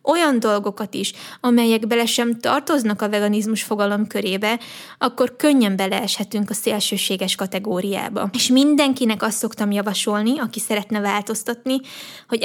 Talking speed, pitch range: 125 wpm, 210-245 Hz